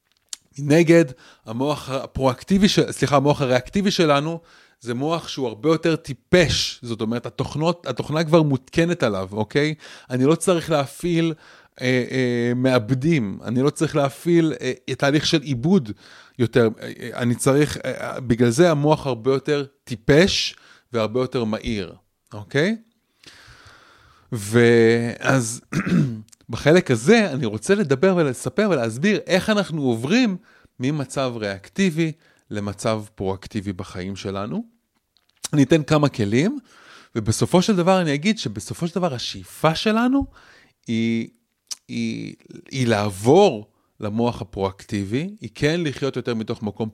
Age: 30-49